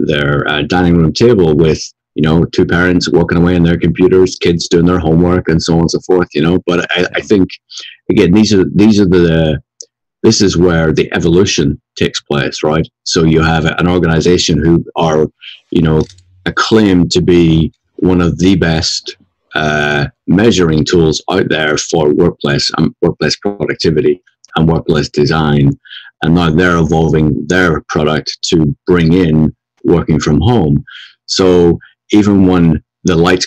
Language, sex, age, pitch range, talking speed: English, male, 30-49, 80-90 Hz, 165 wpm